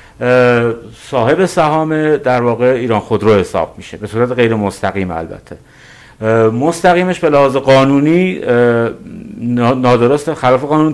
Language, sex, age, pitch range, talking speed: Persian, male, 50-69, 115-145 Hz, 115 wpm